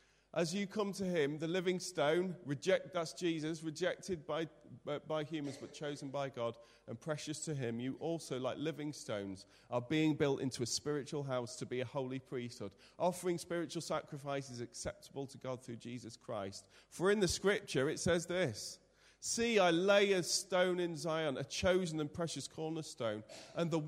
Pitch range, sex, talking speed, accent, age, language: 135-175 Hz, male, 175 wpm, British, 40-59, English